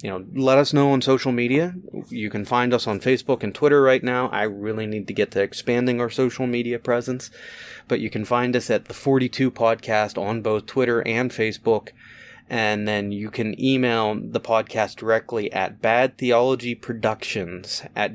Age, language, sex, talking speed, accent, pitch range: 30-49, English, male, 180 wpm, American, 105-125 Hz